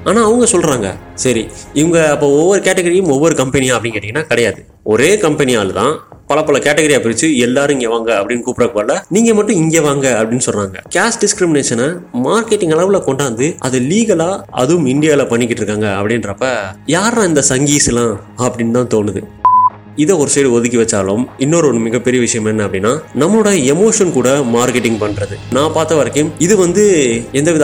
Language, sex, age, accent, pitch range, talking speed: Tamil, male, 20-39, native, 115-160 Hz, 115 wpm